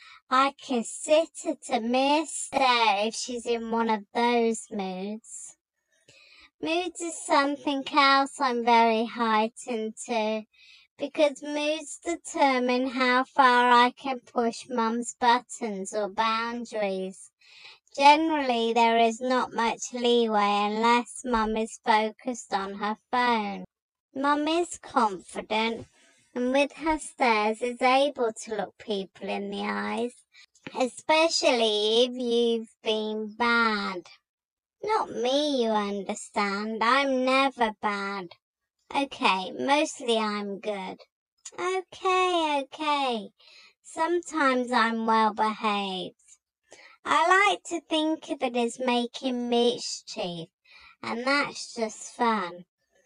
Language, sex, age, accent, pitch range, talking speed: English, male, 30-49, British, 220-280 Hz, 110 wpm